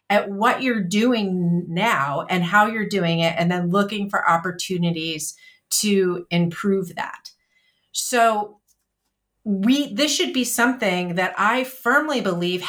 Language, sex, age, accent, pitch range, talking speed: English, female, 30-49, American, 175-220 Hz, 130 wpm